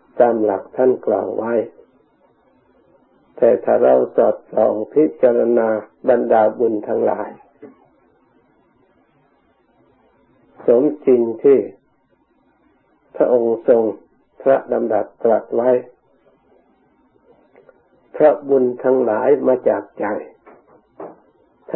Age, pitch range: 60-79, 115-145 Hz